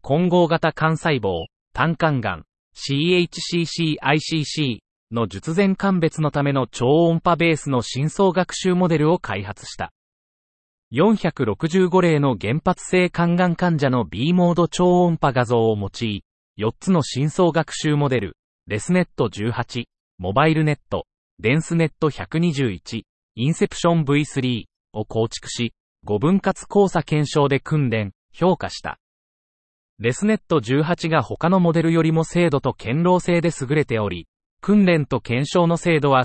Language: Japanese